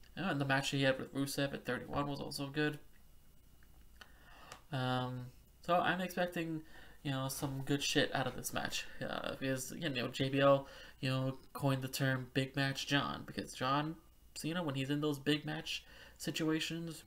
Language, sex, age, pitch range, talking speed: English, male, 20-39, 130-150 Hz, 180 wpm